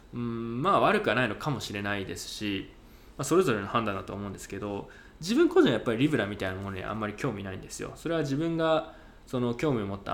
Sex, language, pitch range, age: male, Japanese, 100-150 Hz, 20-39